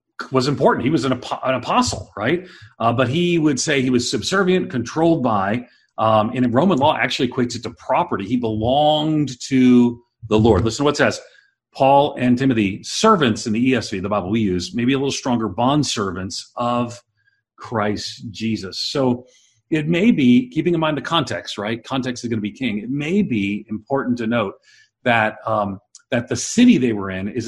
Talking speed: 195 wpm